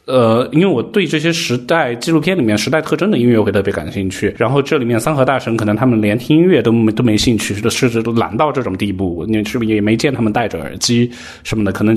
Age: 20-39